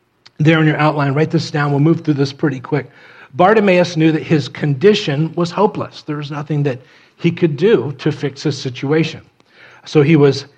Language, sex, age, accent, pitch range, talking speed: English, male, 40-59, American, 125-155 Hz, 195 wpm